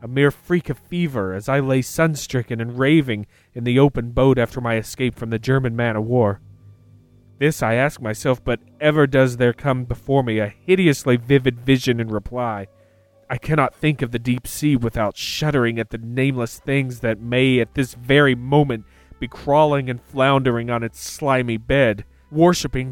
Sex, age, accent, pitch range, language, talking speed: male, 30-49, American, 115-145 Hz, English, 175 wpm